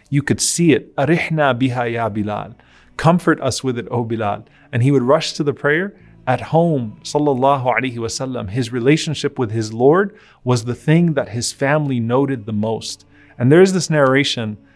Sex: male